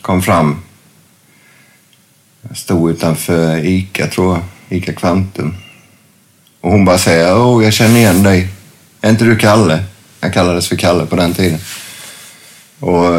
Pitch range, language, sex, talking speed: 85-105 Hz, English, male, 135 wpm